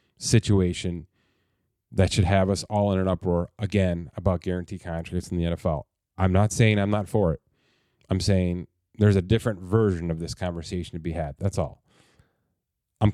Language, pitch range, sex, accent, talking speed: English, 90-110 Hz, male, American, 175 wpm